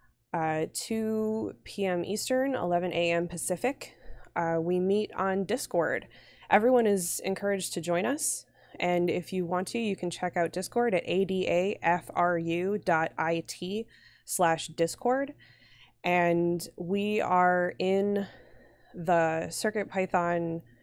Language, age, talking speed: English, 20-39, 110 wpm